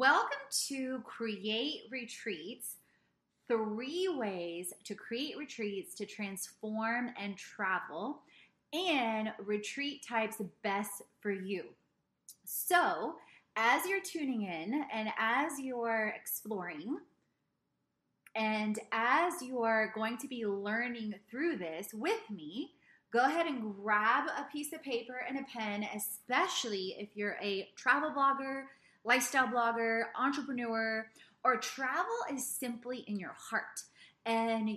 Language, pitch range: English, 215-260 Hz